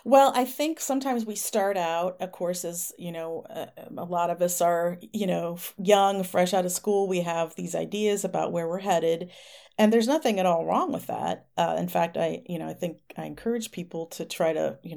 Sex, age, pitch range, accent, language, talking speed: female, 40-59, 165-205 Hz, American, English, 225 wpm